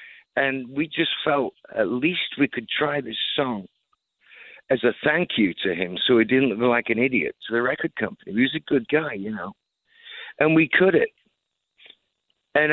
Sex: male